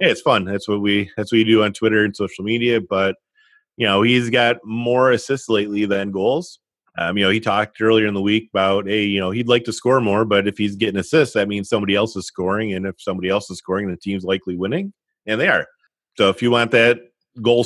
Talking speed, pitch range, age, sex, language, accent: 250 wpm, 95-115 Hz, 30-49, male, English, American